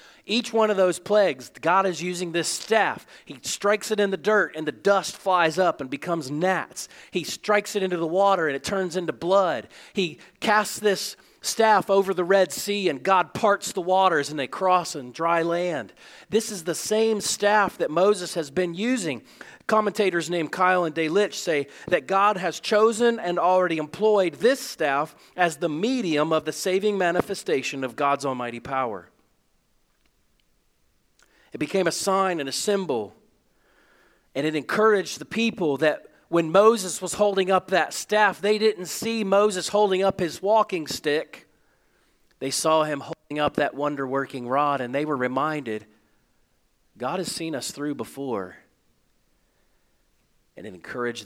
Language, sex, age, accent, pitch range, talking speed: English, male, 40-59, American, 150-205 Hz, 165 wpm